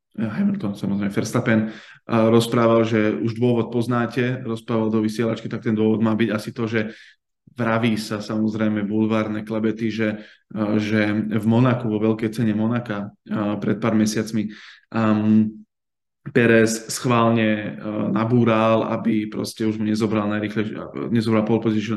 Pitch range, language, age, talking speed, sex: 110-120 Hz, Slovak, 20-39, 140 wpm, male